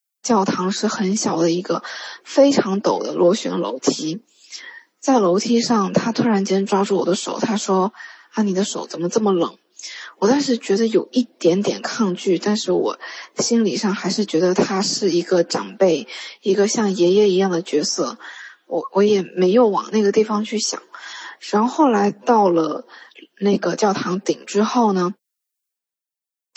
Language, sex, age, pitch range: Chinese, female, 20-39, 185-230 Hz